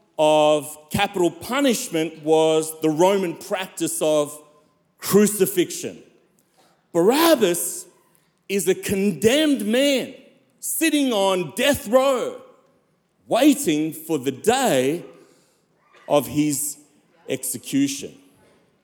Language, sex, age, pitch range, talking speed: English, male, 40-59, 160-235 Hz, 80 wpm